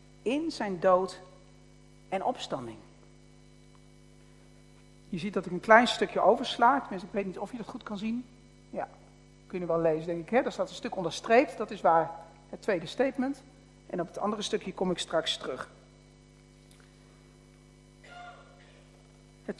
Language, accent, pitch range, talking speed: Dutch, Dutch, 170-240 Hz, 160 wpm